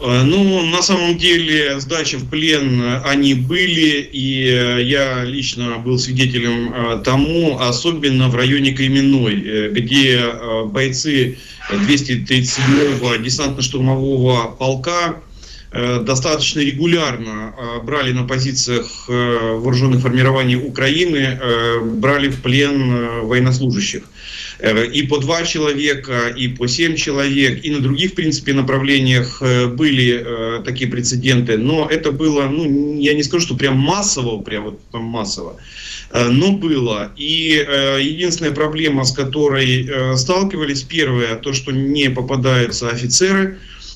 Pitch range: 125-150 Hz